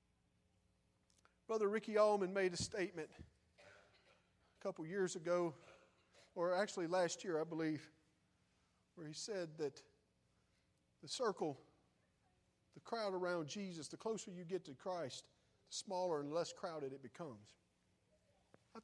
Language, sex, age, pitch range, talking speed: English, male, 40-59, 140-200 Hz, 125 wpm